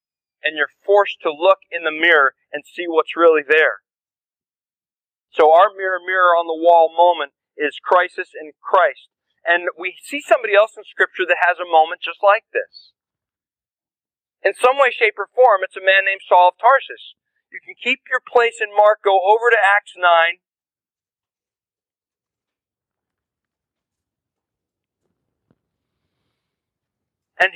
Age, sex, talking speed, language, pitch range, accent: 40-59, male, 135 wpm, English, 170-230 Hz, American